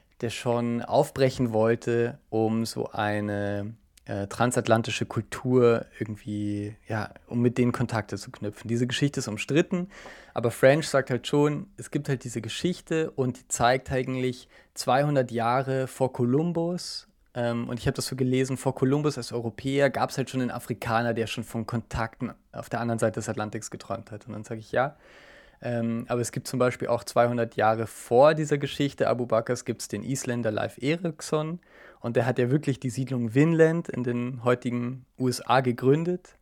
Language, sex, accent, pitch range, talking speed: German, male, German, 115-135 Hz, 175 wpm